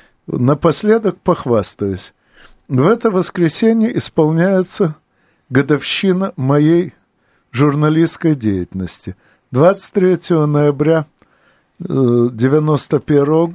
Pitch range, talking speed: 125-170 Hz, 60 wpm